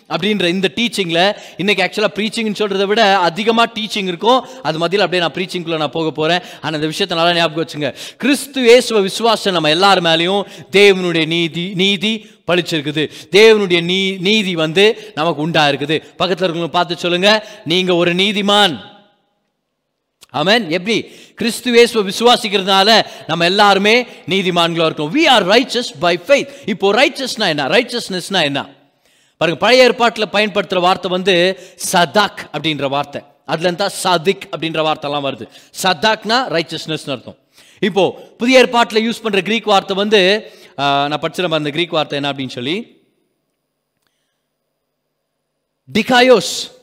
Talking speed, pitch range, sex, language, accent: 40 wpm, 165-215 Hz, male, Tamil, native